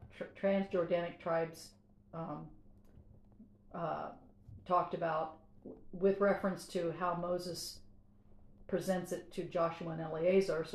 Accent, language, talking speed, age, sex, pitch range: American, English, 100 wpm, 50-69, female, 155-180 Hz